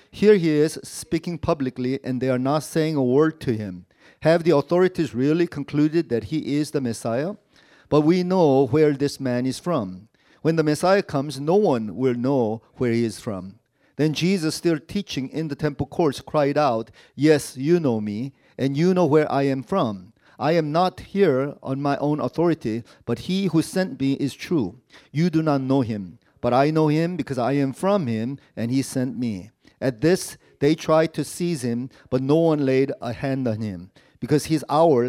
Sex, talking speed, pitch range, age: male, 200 wpm, 125-160 Hz, 40-59